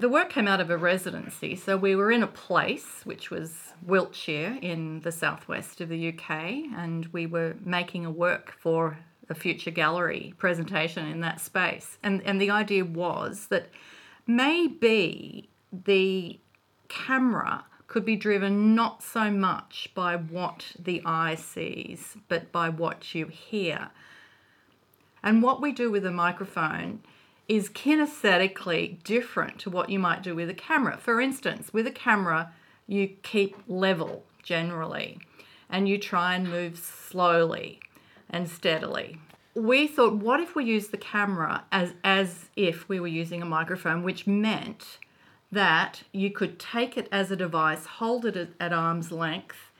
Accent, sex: Australian, female